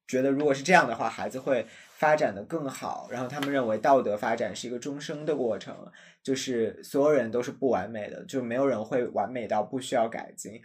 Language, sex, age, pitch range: Chinese, male, 20-39, 125-155 Hz